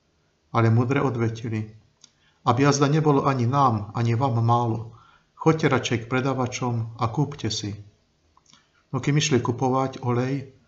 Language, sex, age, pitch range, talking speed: Slovak, male, 50-69, 115-135 Hz, 130 wpm